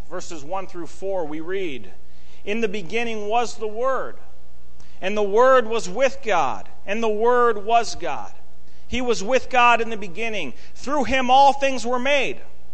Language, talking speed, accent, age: English, 170 wpm, American, 40-59